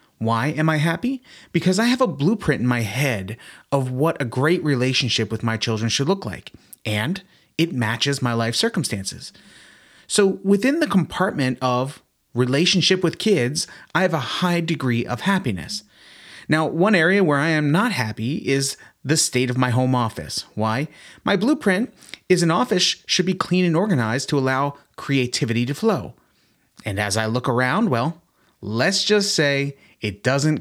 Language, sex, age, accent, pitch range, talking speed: English, male, 30-49, American, 120-170 Hz, 170 wpm